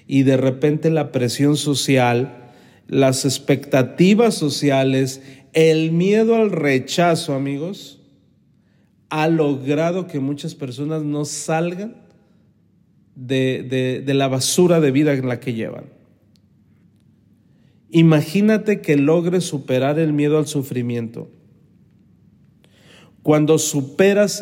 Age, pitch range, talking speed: 40-59, 130-160 Hz, 100 wpm